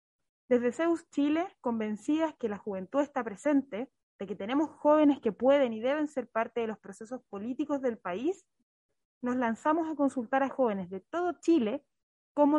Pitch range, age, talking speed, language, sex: 235-295 Hz, 20-39, 165 wpm, Spanish, female